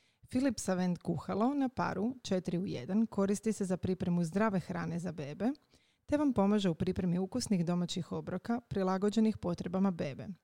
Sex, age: female, 30-49